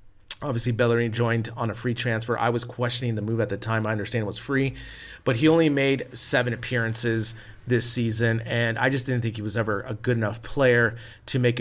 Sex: male